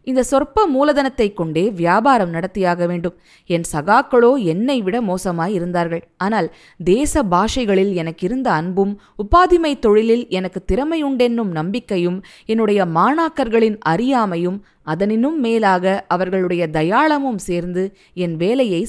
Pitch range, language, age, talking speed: 175-250 Hz, Tamil, 20-39, 100 wpm